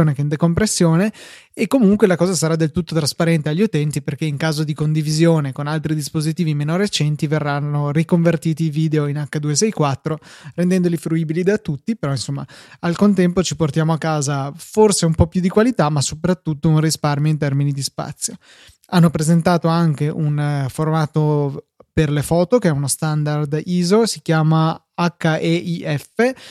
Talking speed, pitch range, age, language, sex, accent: 160 wpm, 150-175 Hz, 20-39, Italian, male, native